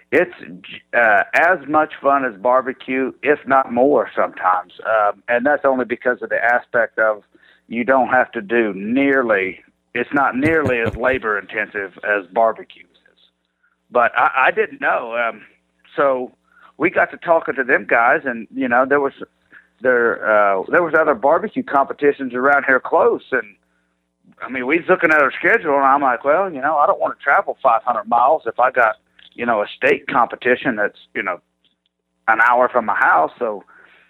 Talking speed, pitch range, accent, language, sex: 180 wpm, 105-140 Hz, American, English, male